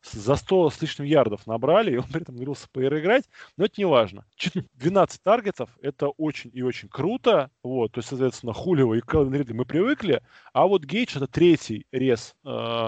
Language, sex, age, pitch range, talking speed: Russian, male, 20-39, 120-165 Hz, 185 wpm